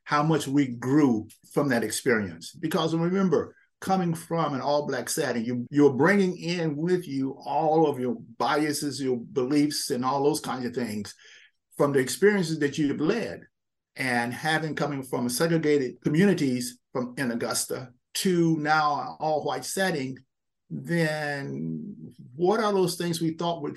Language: English